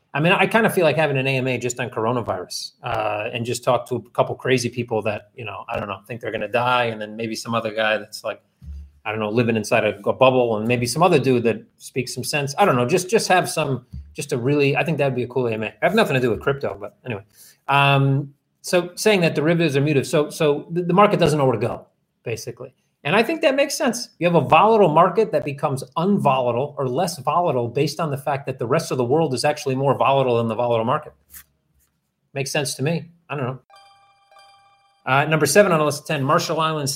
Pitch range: 120-165 Hz